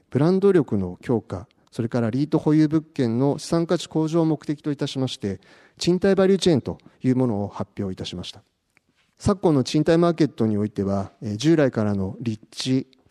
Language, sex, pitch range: Japanese, male, 110-150 Hz